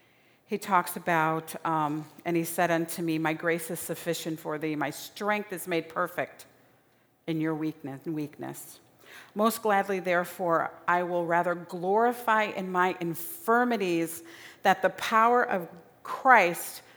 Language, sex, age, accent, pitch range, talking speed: English, female, 40-59, American, 170-245 Hz, 135 wpm